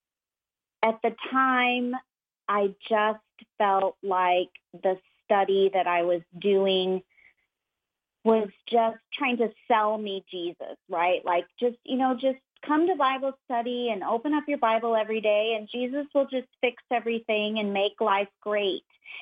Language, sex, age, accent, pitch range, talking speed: English, female, 40-59, American, 190-245 Hz, 145 wpm